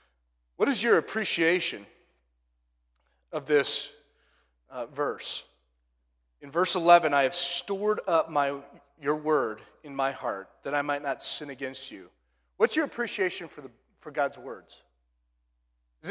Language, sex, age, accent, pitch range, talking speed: English, male, 30-49, American, 130-185 Hz, 140 wpm